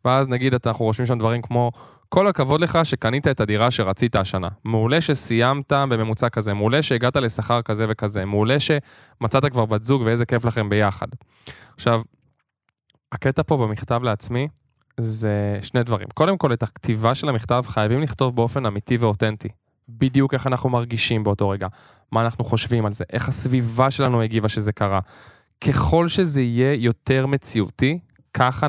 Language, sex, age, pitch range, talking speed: Hebrew, male, 20-39, 115-140 Hz, 155 wpm